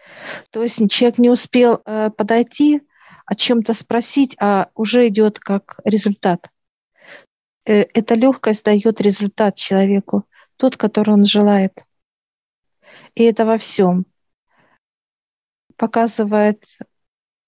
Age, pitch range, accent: 50-69, 195-230 Hz, native